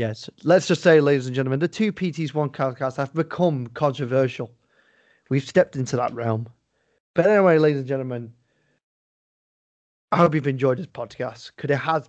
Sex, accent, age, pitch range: male, British, 30-49, 125-145 Hz